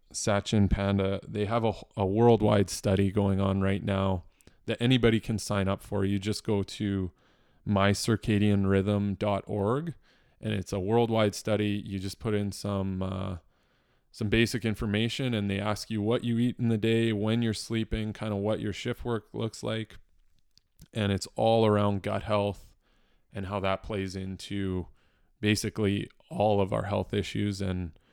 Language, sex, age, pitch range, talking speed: English, male, 20-39, 100-115 Hz, 160 wpm